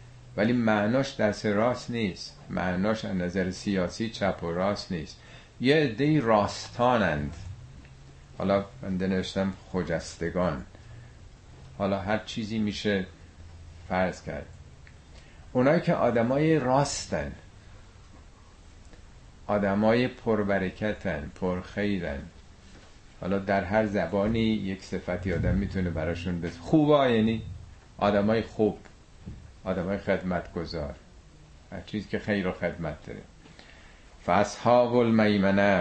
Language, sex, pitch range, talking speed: Persian, male, 85-110 Hz, 105 wpm